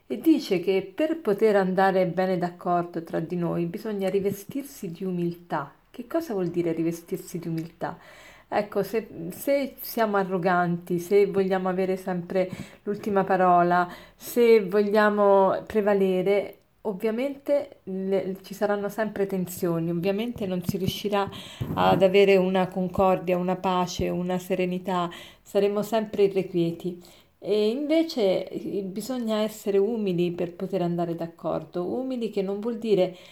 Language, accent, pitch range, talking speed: Italian, native, 180-215 Hz, 125 wpm